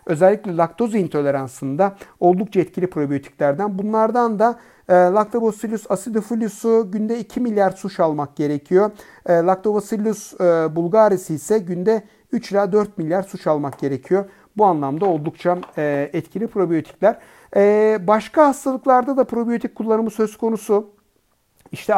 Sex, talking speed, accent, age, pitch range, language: male, 125 wpm, native, 60-79, 160-205 Hz, Turkish